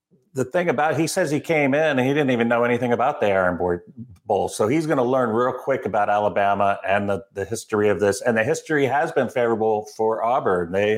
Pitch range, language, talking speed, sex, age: 105-130 Hz, English, 230 wpm, male, 40-59